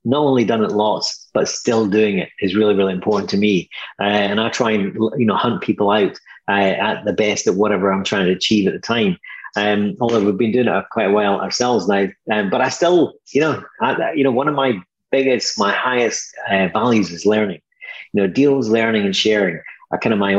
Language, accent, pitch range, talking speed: English, British, 100-130 Hz, 225 wpm